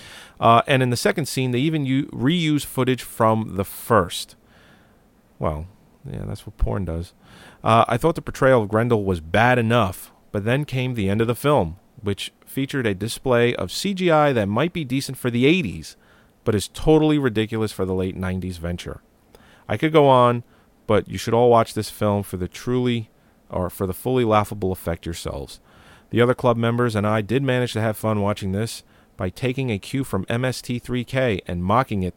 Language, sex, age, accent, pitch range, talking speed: English, male, 40-59, American, 100-130 Hz, 190 wpm